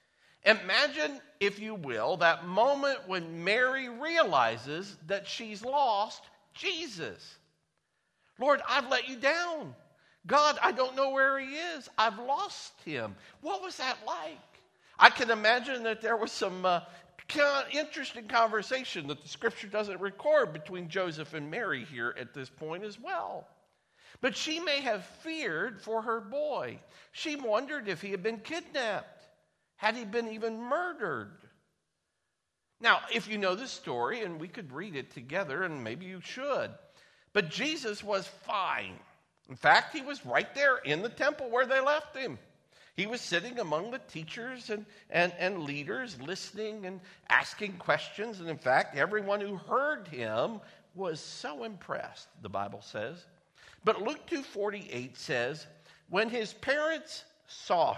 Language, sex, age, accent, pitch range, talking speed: English, male, 50-69, American, 195-280 Hz, 155 wpm